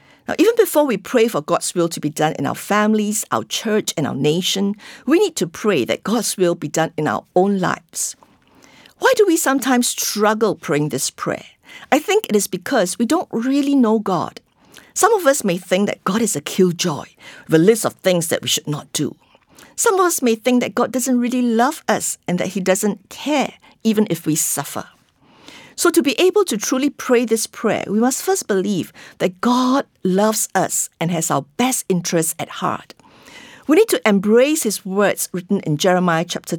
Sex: female